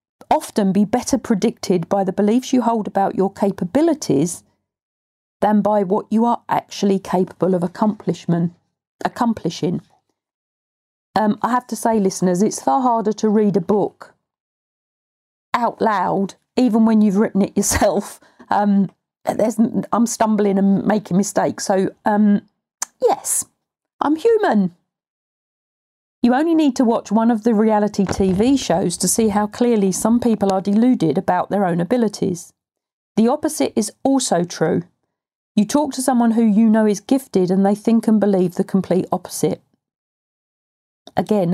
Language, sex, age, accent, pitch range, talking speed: English, female, 40-59, British, 195-235 Hz, 145 wpm